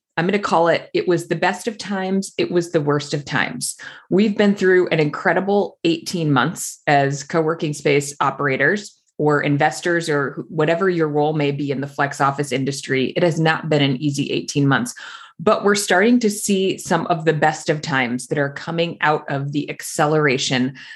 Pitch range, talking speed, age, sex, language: 140-175 Hz, 190 wpm, 30-49, female, English